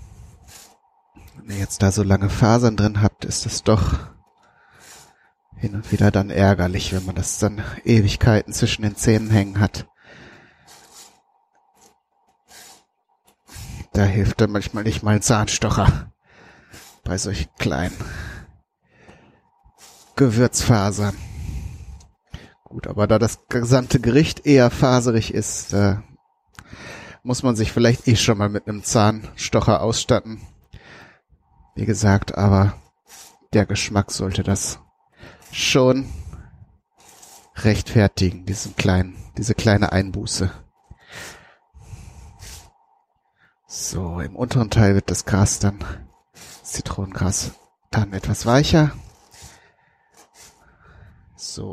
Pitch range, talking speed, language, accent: 100-120 Hz, 100 wpm, German, German